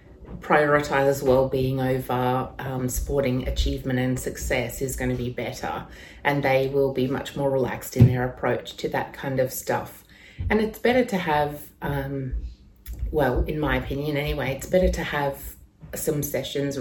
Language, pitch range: English, 125-145 Hz